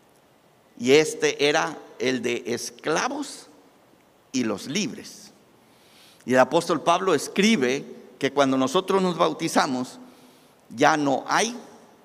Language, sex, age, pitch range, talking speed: Spanish, male, 50-69, 125-200 Hz, 110 wpm